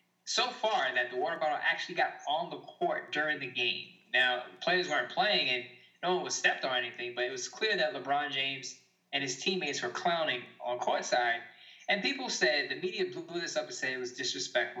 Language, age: English, 20-39